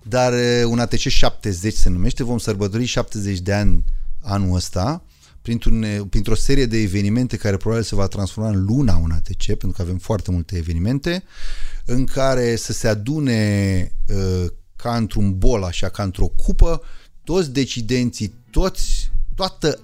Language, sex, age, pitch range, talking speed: Romanian, male, 30-49, 100-130 Hz, 145 wpm